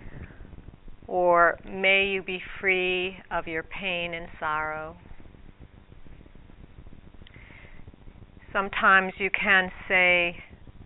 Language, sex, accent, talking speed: English, female, American, 75 wpm